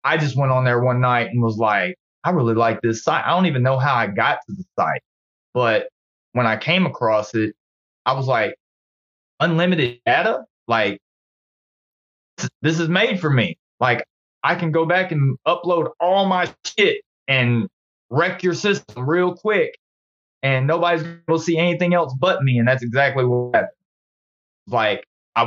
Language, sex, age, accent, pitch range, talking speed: English, male, 20-39, American, 115-150 Hz, 175 wpm